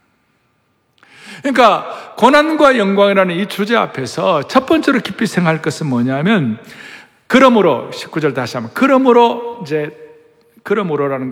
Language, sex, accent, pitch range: Korean, male, native, 170-270 Hz